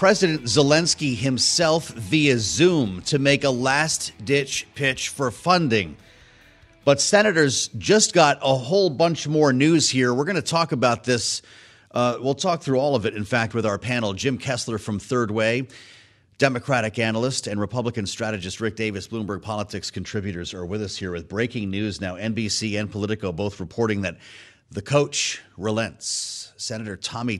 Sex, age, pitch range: male, 30-49, 105-130 Hz